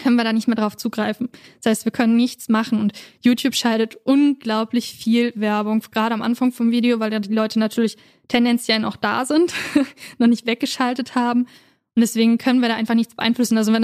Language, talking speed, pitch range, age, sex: German, 200 wpm, 230-260 Hz, 10-29, female